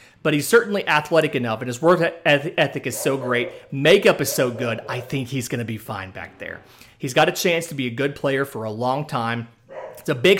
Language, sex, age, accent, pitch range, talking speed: English, male, 30-49, American, 125-155 Hz, 235 wpm